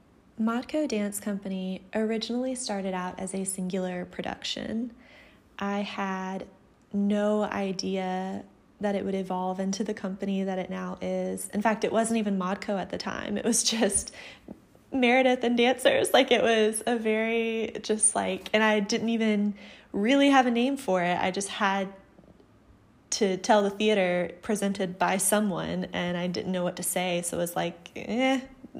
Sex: female